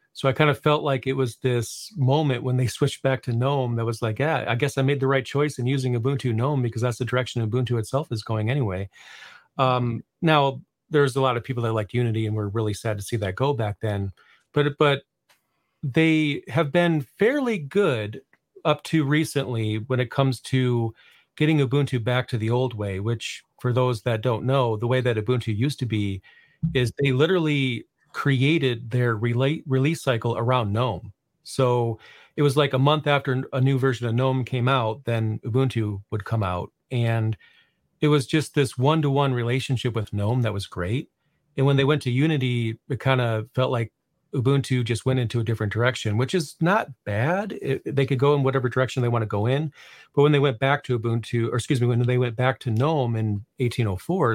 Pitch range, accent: 115-140 Hz, American